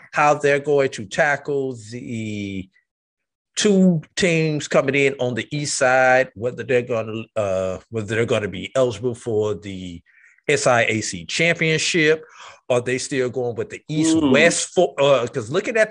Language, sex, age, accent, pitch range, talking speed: English, male, 50-69, American, 110-150 Hz, 150 wpm